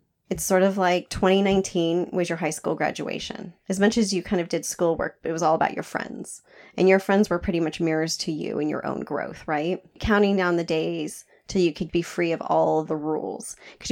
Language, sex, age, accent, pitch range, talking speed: English, female, 30-49, American, 160-195 Hz, 225 wpm